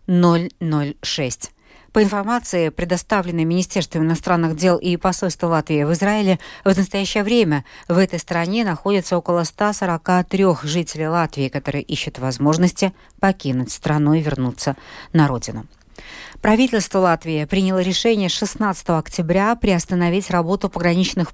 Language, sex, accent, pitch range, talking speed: Russian, female, native, 155-195 Hz, 115 wpm